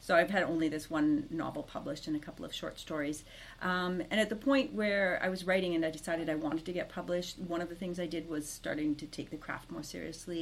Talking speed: 260 wpm